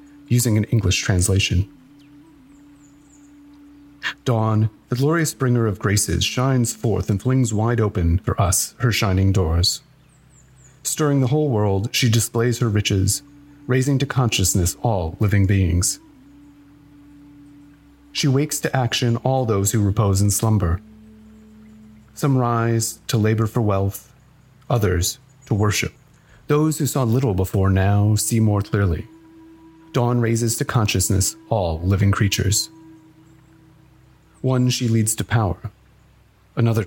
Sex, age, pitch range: male, 30-49, 105-145 Hz